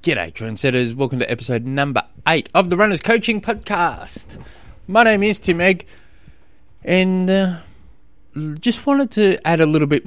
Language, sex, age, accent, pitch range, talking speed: English, male, 20-39, Australian, 100-130 Hz, 155 wpm